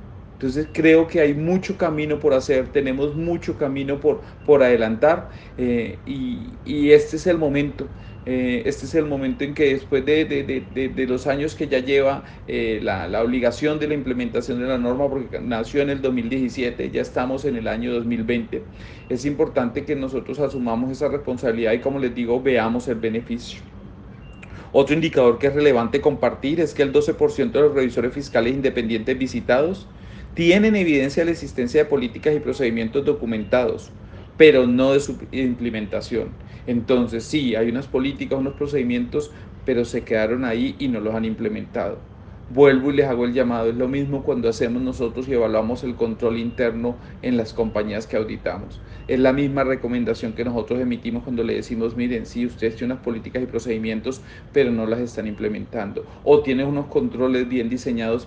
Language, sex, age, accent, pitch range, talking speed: Spanish, male, 40-59, Colombian, 115-140 Hz, 175 wpm